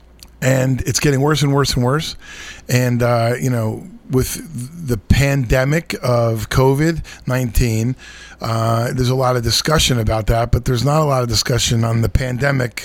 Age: 40-59